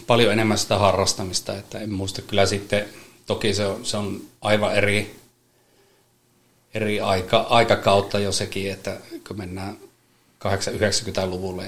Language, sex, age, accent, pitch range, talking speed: Finnish, male, 30-49, native, 95-105 Hz, 130 wpm